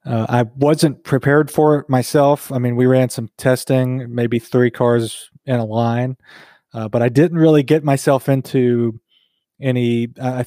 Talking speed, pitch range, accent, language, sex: 165 wpm, 120-140 Hz, American, English, male